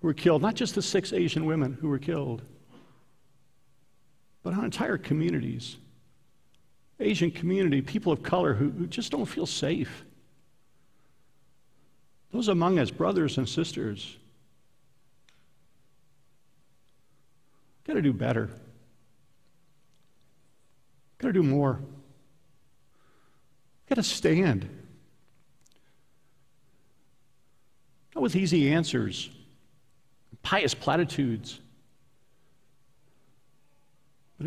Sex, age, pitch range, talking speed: male, 50-69, 130-185 Hz, 85 wpm